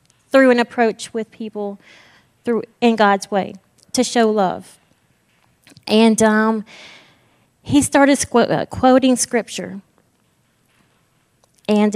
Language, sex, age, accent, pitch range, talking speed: English, female, 30-49, American, 200-235 Hz, 105 wpm